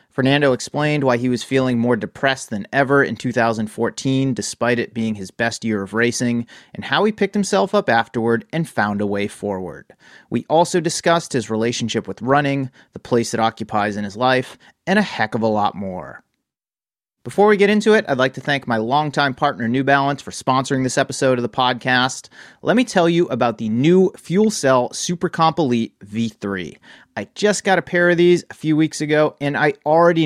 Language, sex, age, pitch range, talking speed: English, male, 30-49, 115-160 Hz, 200 wpm